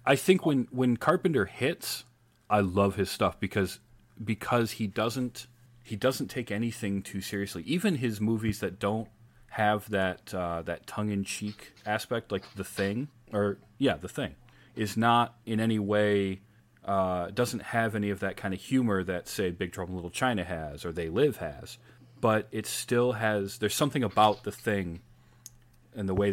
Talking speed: 175 wpm